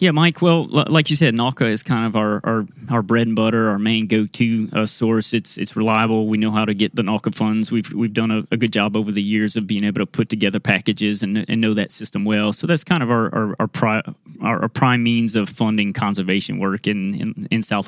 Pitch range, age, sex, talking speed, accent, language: 110-125 Hz, 20-39, male, 260 wpm, American, English